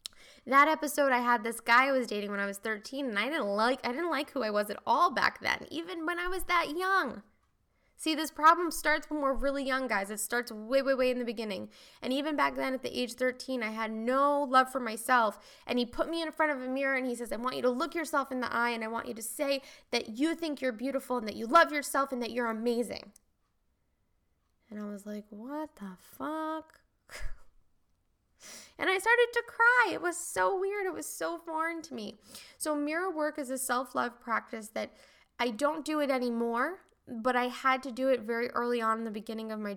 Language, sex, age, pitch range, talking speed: English, female, 10-29, 215-280 Hz, 230 wpm